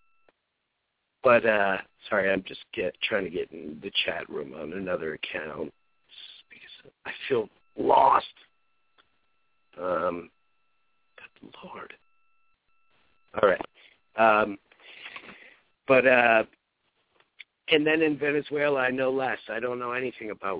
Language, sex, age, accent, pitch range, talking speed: English, male, 50-69, American, 100-125 Hz, 115 wpm